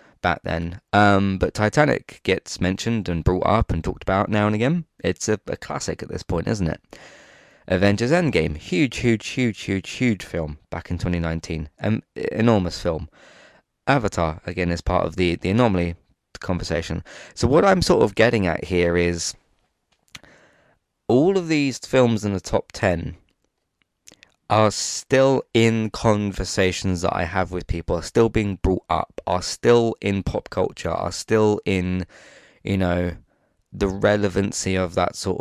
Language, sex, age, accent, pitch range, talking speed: English, male, 20-39, British, 90-105 Hz, 160 wpm